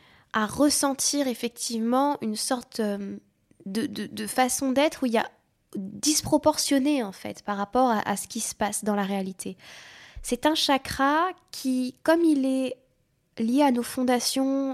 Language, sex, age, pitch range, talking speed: French, female, 10-29, 220-270 Hz, 160 wpm